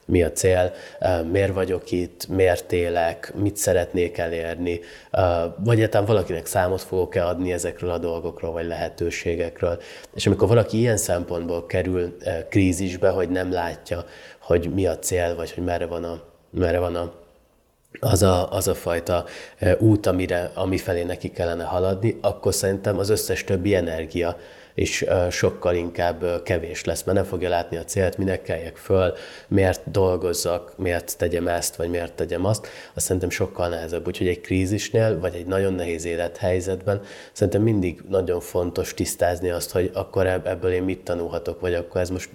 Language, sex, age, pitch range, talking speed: Hungarian, male, 20-39, 85-95 Hz, 155 wpm